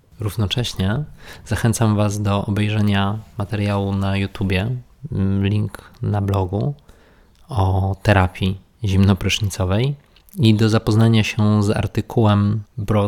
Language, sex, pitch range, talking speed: Polish, male, 100-115 Hz, 95 wpm